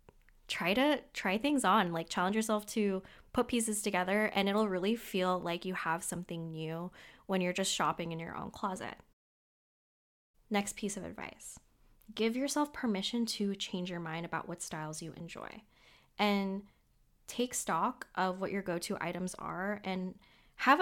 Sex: female